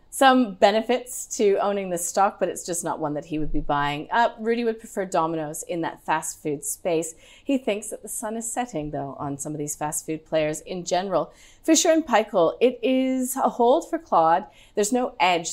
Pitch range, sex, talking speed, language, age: 160-235 Hz, female, 210 wpm, English, 30-49